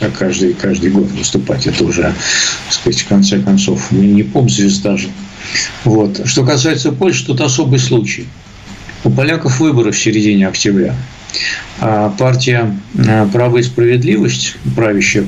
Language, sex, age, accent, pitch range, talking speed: Russian, male, 60-79, native, 100-125 Hz, 135 wpm